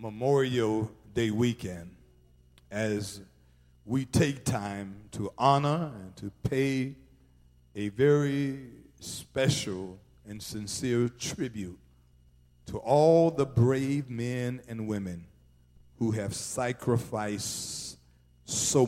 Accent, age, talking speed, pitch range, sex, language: American, 50-69, 90 wpm, 85-130 Hz, male, English